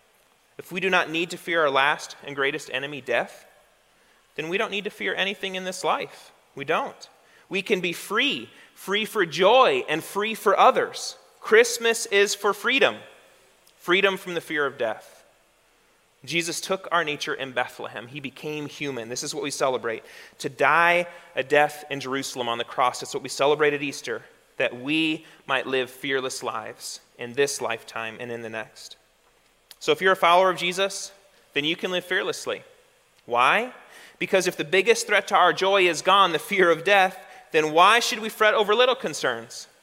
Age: 30-49